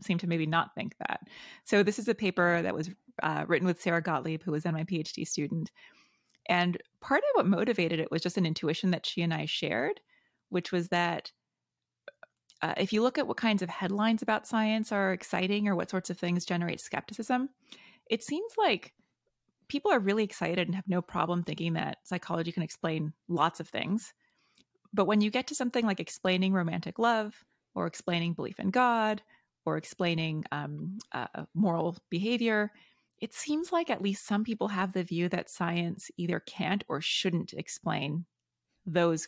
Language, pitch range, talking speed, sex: English, 170-215 Hz, 185 wpm, female